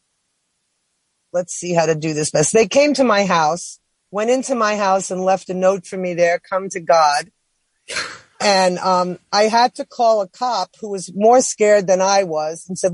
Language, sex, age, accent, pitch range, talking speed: English, female, 40-59, American, 185-220 Hz, 195 wpm